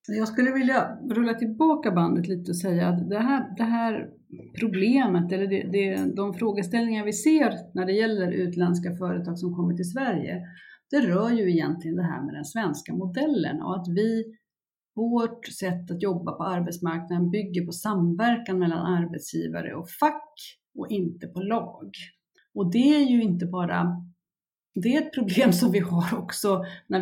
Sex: female